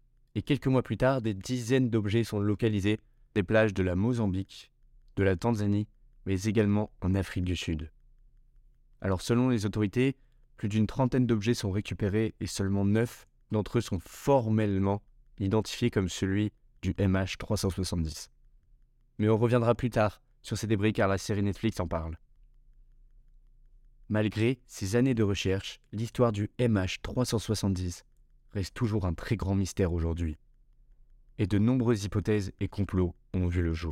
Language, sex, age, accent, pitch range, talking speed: French, male, 20-39, French, 100-125 Hz, 150 wpm